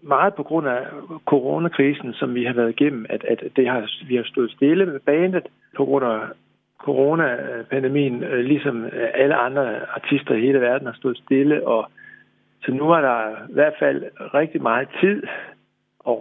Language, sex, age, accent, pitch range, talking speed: Danish, male, 60-79, native, 130-180 Hz, 170 wpm